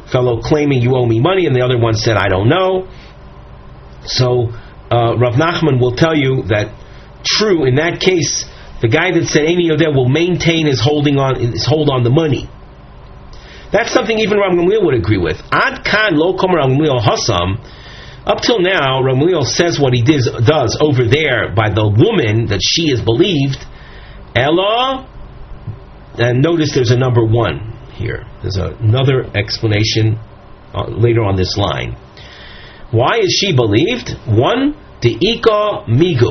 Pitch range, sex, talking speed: 115-165 Hz, male, 155 wpm